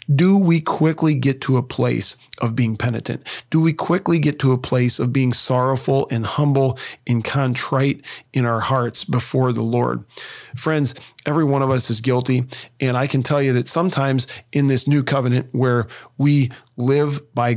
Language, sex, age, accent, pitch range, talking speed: English, male, 40-59, American, 120-140 Hz, 180 wpm